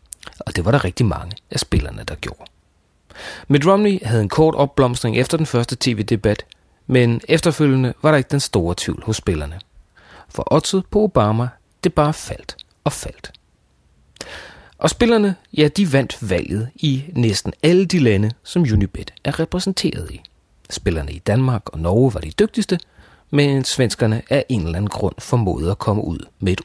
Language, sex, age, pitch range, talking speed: Danish, male, 40-59, 90-140 Hz, 170 wpm